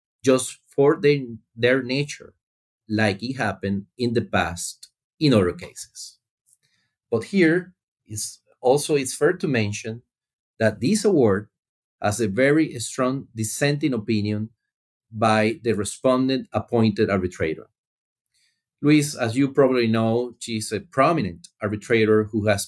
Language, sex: English, male